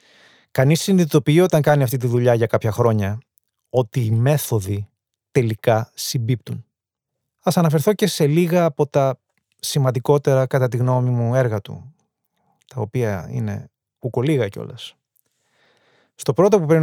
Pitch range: 115-140 Hz